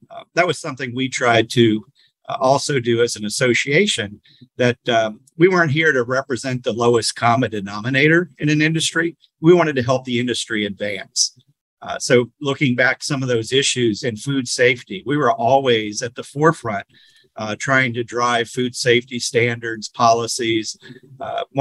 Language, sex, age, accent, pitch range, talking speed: English, male, 50-69, American, 115-140 Hz, 165 wpm